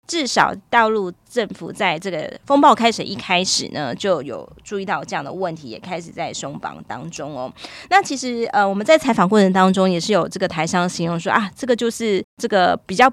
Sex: female